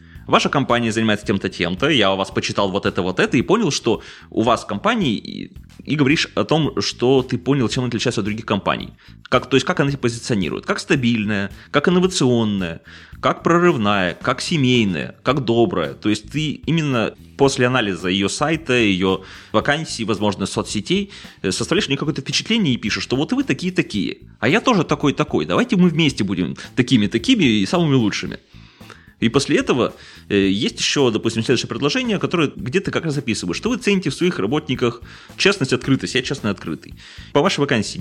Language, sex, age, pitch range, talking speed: Russian, male, 20-39, 105-150 Hz, 175 wpm